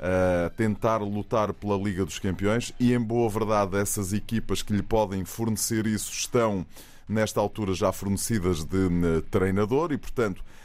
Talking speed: 150 wpm